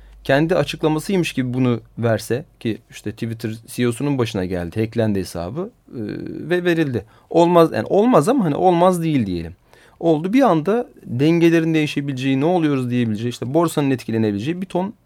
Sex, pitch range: male, 115-165 Hz